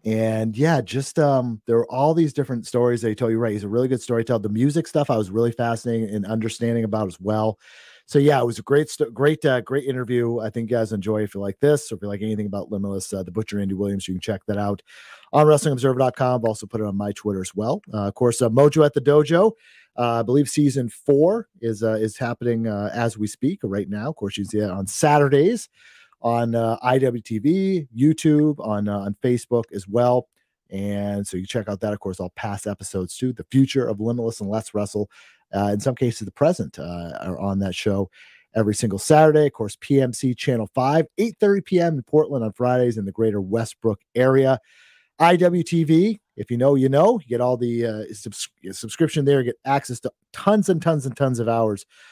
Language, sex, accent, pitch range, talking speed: English, male, American, 105-135 Hz, 225 wpm